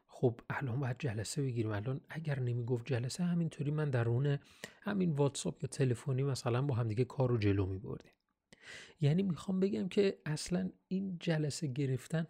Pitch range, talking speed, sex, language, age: 120-155 Hz, 150 wpm, male, Persian, 40-59